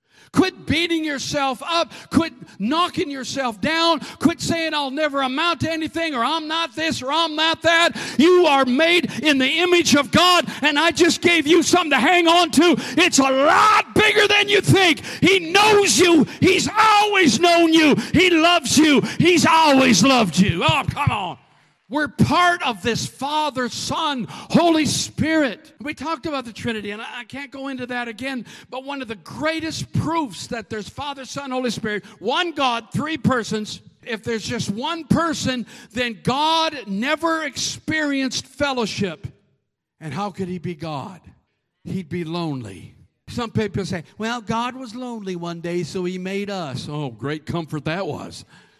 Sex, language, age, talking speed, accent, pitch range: male, English, 50-69, 170 wpm, American, 215-325 Hz